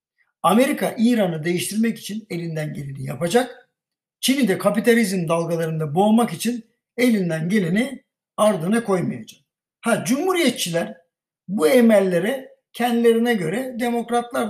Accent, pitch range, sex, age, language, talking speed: native, 185-240 Hz, male, 60-79, Turkish, 100 wpm